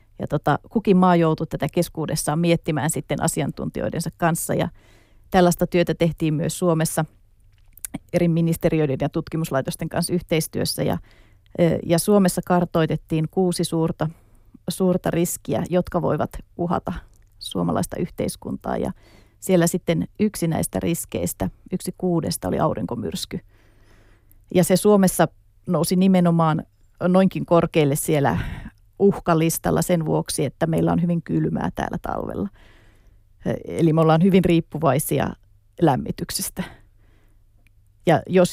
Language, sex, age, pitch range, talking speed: Finnish, female, 30-49, 110-175 Hz, 110 wpm